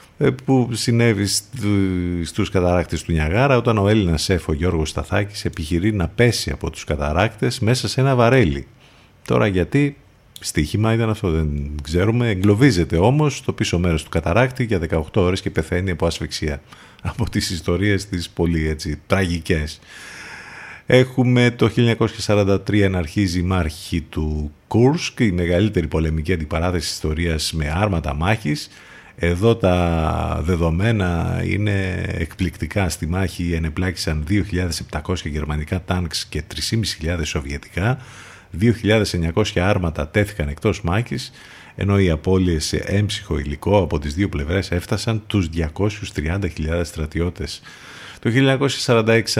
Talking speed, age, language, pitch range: 125 wpm, 50-69, Greek, 80-110 Hz